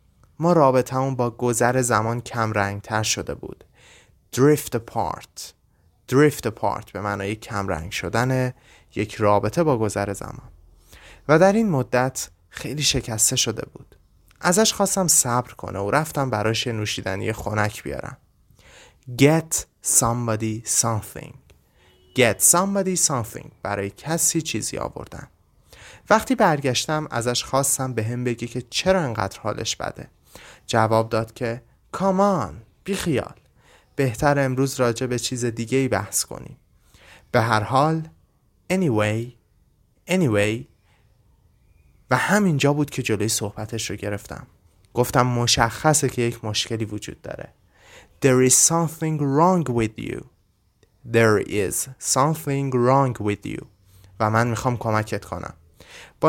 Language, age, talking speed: Persian, 30-49, 125 wpm